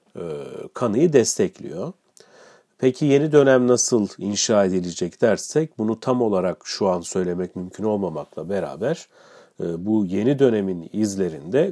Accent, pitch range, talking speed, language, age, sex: native, 95-135 Hz, 115 wpm, Turkish, 40-59, male